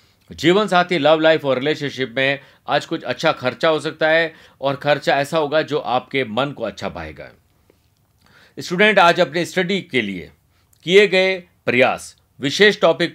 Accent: native